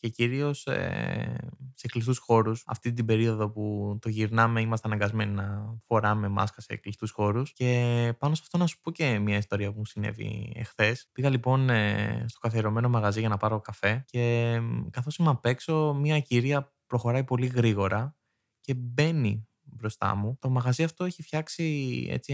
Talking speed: 165 wpm